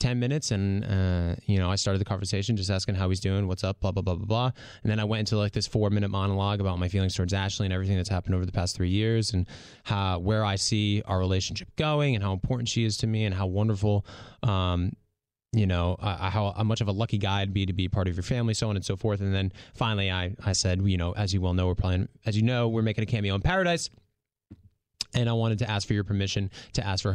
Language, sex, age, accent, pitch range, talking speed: English, male, 20-39, American, 95-110 Hz, 265 wpm